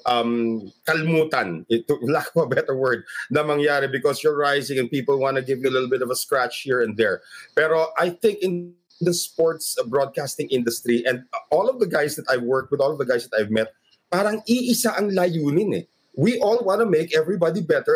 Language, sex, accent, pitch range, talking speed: English, male, Filipino, 130-185 Hz, 215 wpm